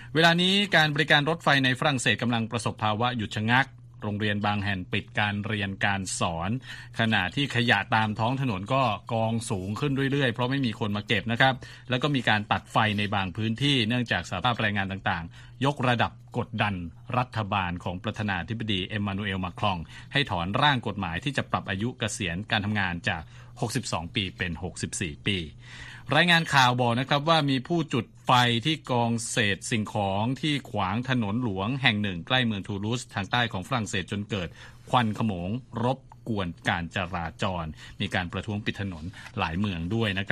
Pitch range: 100-125 Hz